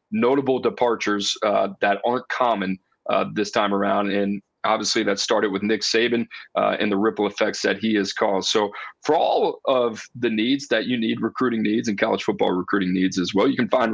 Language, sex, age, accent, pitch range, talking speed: English, male, 30-49, American, 105-135 Hz, 200 wpm